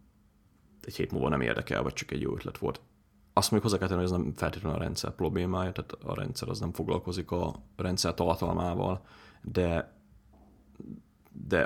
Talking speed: 175 wpm